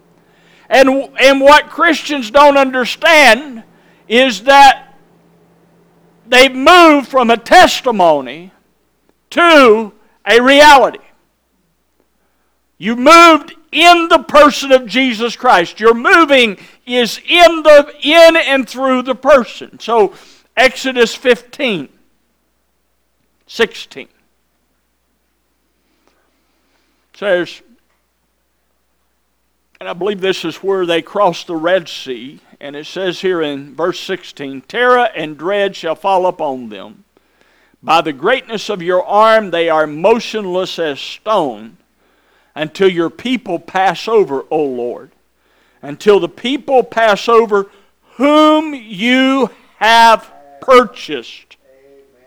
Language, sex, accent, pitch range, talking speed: English, male, American, 175-270 Hz, 105 wpm